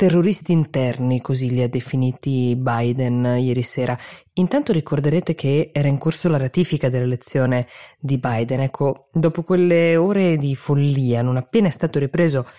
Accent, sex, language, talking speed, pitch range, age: native, female, Italian, 150 wpm, 135-165 Hz, 20-39